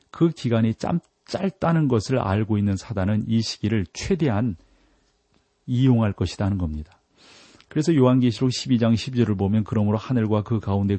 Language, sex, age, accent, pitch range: Korean, male, 40-59, native, 105-130 Hz